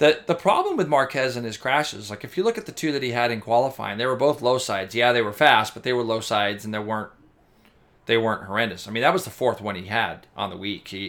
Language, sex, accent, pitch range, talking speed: English, male, American, 110-130 Hz, 280 wpm